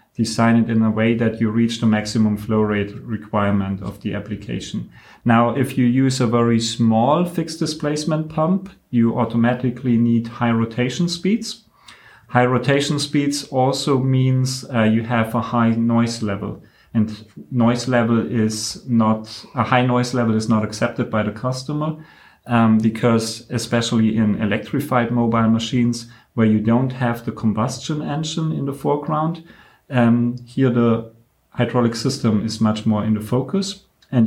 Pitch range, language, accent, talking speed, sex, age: 110-130 Hz, English, German, 155 wpm, male, 30-49